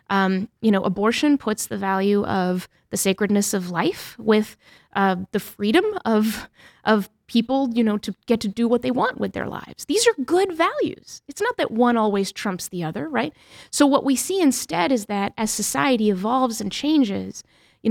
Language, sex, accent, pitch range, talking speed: English, female, American, 195-265 Hz, 190 wpm